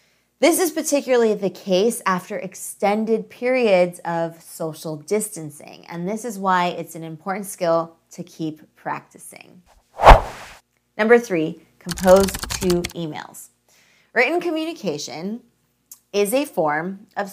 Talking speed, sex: 115 wpm, female